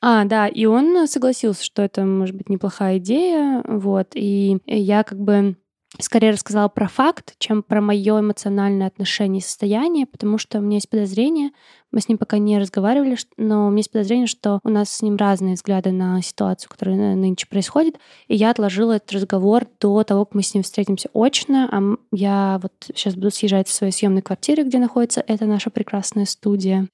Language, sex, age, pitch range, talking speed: Russian, female, 20-39, 195-230 Hz, 190 wpm